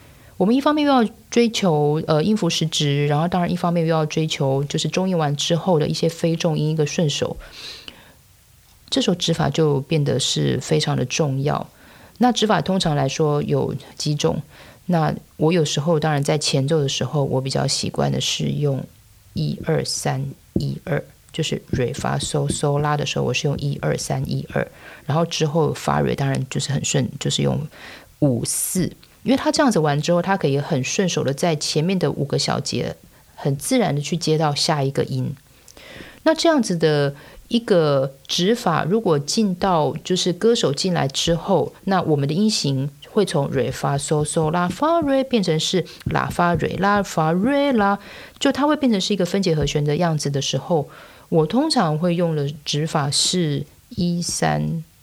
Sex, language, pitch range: female, Chinese, 140-180 Hz